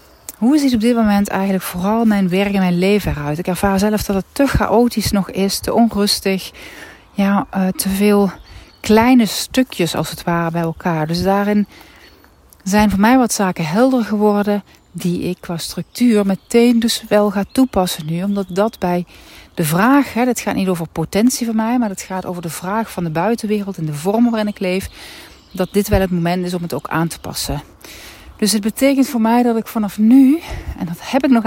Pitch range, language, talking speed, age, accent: 180-220 Hz, Dutch, 200 wpm, 40-59, Dutch